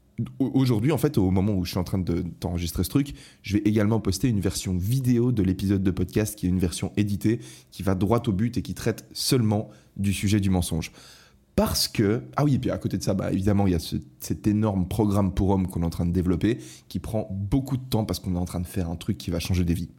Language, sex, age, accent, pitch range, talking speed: French, male, 20-39, French, 90-110 Hz, 265 wpm